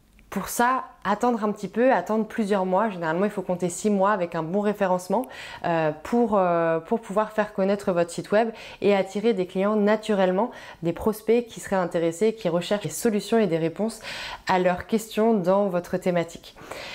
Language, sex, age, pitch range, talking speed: French, female, 20-39, 170-215 Hz, 175 wpm